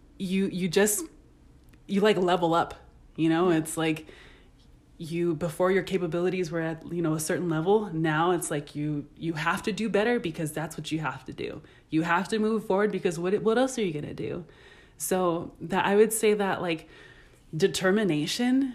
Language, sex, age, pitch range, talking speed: English, female, 20-39, 165-200 Hz, 190 wpm